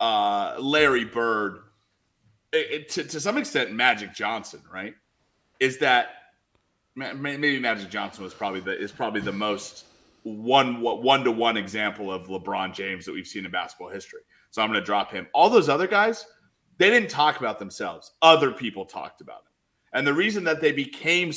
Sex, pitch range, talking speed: male, 140-210 Hz, 175 wpm